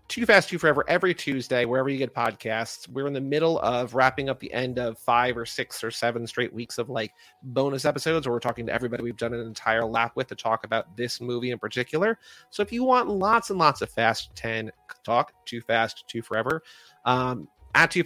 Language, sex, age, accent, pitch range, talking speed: English, male, 30-49, American, 120-155 Hz, 225 wpm